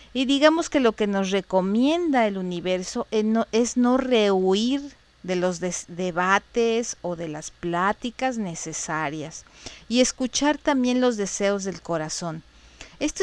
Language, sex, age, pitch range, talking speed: Spanish, female, 40-59, 180-230 Hz, 130 wpm